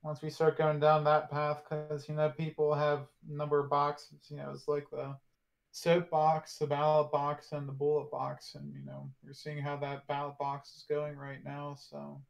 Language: English